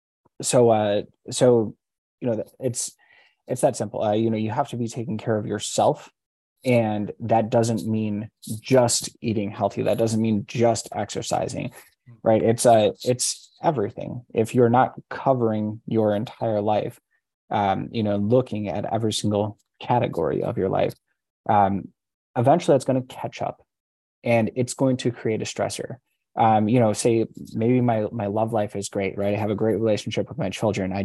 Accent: American